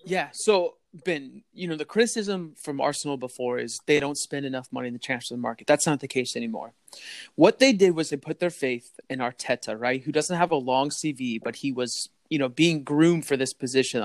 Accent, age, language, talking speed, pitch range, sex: American, 20-39, English, 225 wpm, 135-185 Hz, male